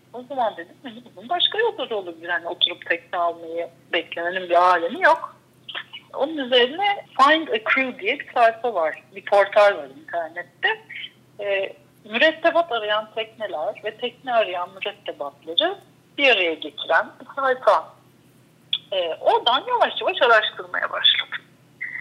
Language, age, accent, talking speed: Turkish, 60-79, native, 130 wpm